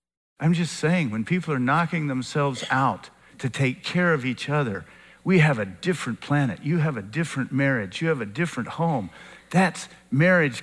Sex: male